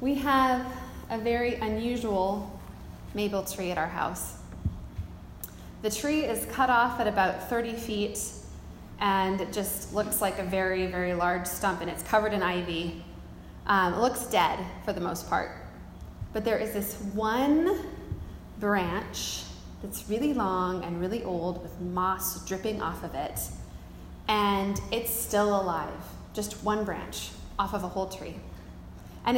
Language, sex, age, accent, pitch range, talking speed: English, female, 20-39, American, 195-240 Hz, 150 wpm